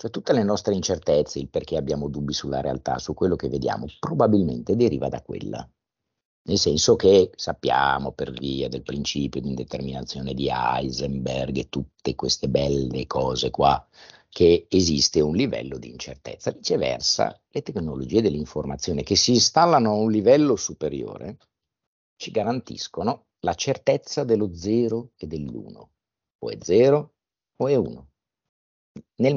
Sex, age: male, 50-69